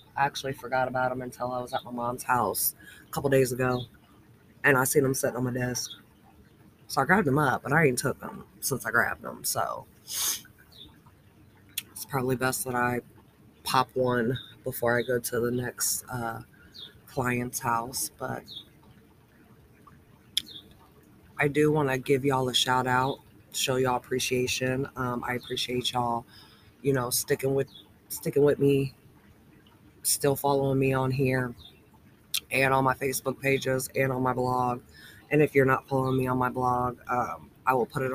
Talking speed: 165 wpm